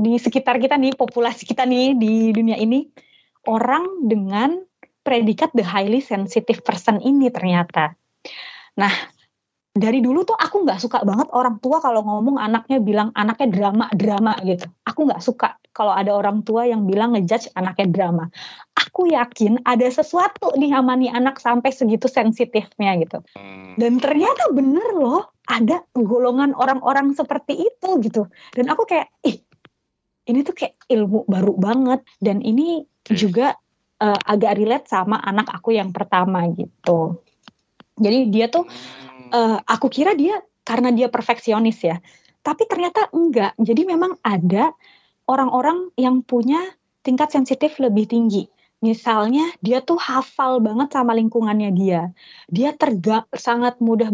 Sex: female